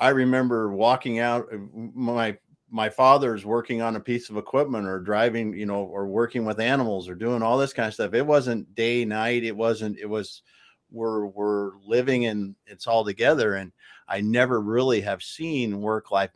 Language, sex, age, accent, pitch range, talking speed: English, male, 50-69, American, 105-120 Hz, 185 wpm